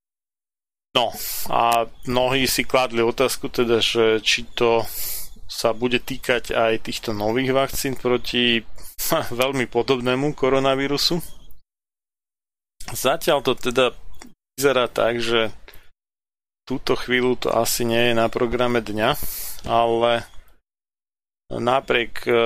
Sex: male